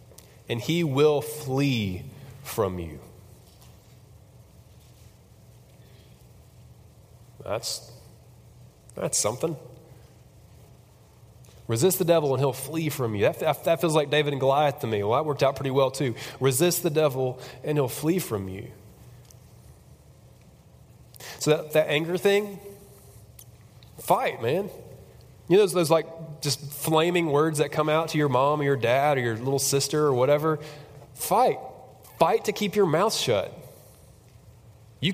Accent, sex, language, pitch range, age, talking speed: American, male, English, 120-170 Hz, 30-49, 135 wpm